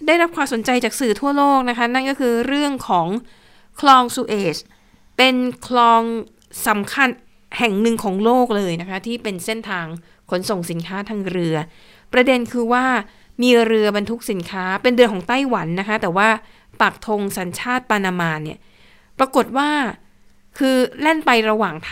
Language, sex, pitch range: Thai, female, 205-255 Hz